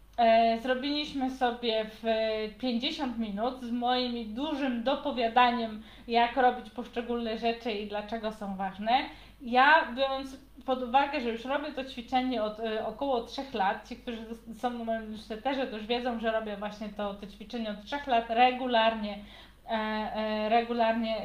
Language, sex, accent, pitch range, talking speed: Polish, female, native, 225-270 Hz, 135 wpm